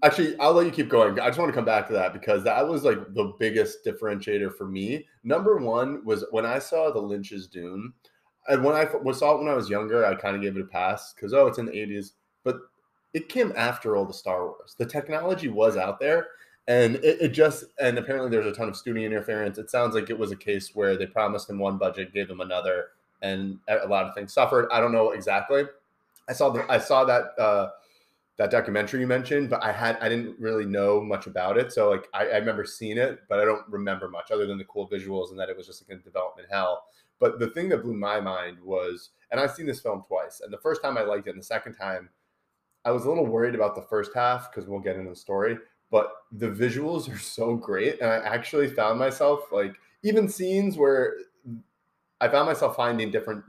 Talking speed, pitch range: 235 wpm, 100-155 Hz